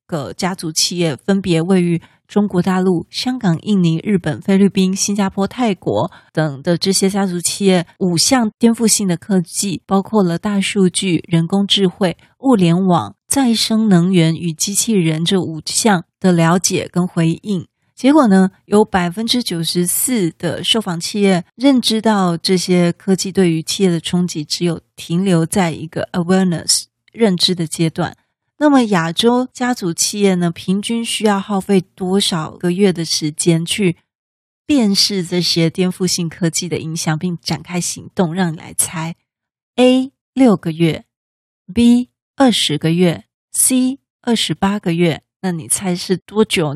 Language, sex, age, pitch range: Chinese, female, 30-49, 170-210 Hz